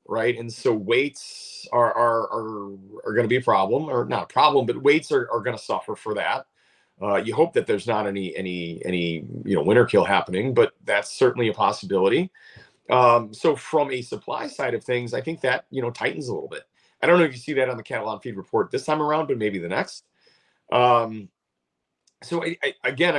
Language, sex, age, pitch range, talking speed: English, male, 40-59, 110-155 Hz, 215 wpm